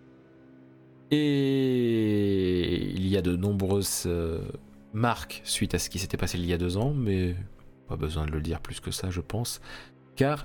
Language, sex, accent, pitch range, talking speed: French, male, French, 85-120 Hz, 180 wpm